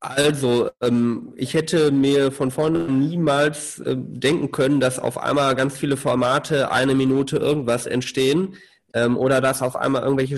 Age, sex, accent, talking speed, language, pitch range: 20-39, male, German, 140 wpm, German, 130-150 Hz